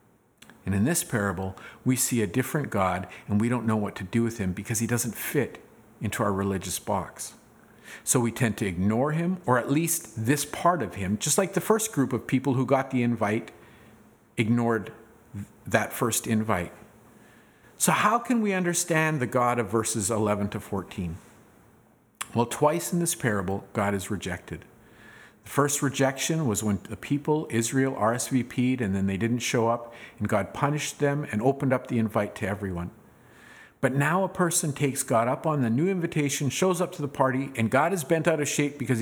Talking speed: 190 wpm